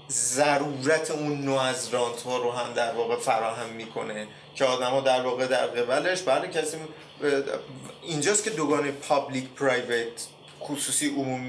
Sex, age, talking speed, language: male, 30-49, 130 wpm, Persian